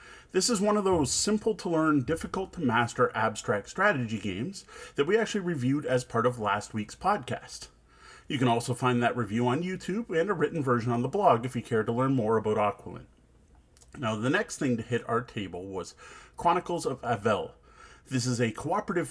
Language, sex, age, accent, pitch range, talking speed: English, male, 40-59, American, 110-175 Hz, 200 wpm